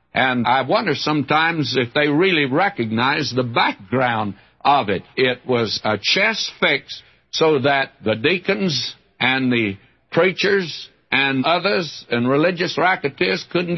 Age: 60-79